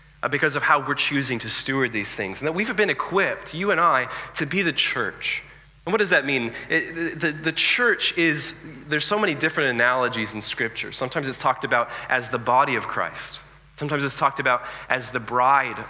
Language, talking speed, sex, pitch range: English, 200 wpm, male, 120-150 Hz